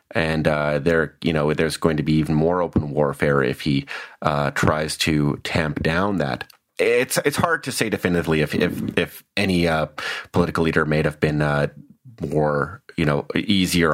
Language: English